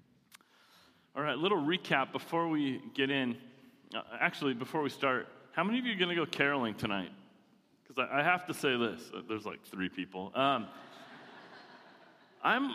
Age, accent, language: 30-49, American, English